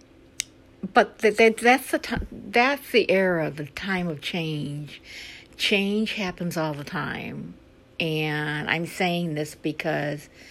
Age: 60-79